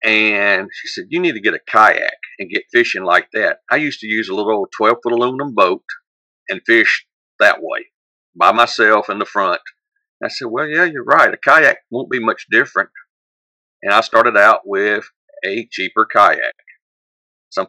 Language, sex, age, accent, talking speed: English, male, 50-69, American, 185 wpm